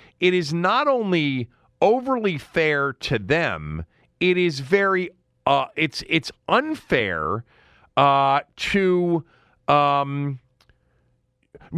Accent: American